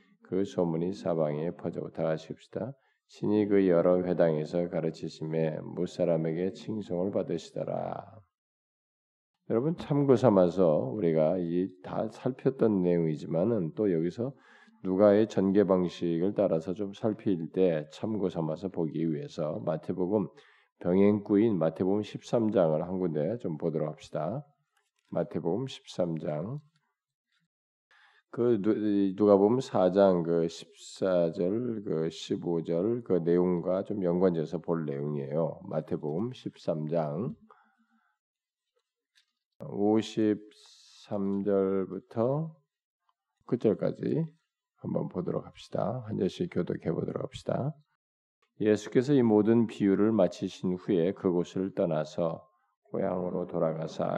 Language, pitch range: Korean, 85-105 Hz